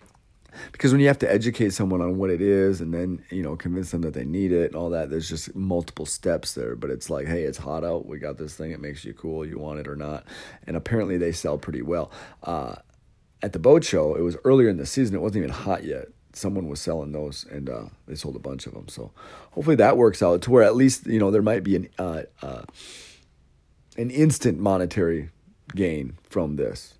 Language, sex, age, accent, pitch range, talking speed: English, male, 40-59, American, 80-120 Hz, 235 wpm